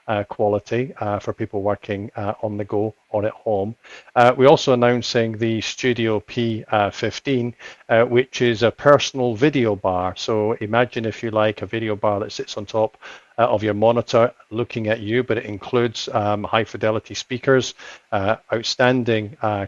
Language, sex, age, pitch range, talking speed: English, male, 50-69, 105-125 Hz, 170 wpm